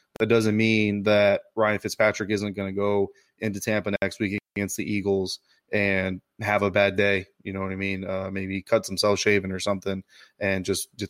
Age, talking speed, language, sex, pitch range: 20-39, 205 wpm, English, male, 100-110 Hz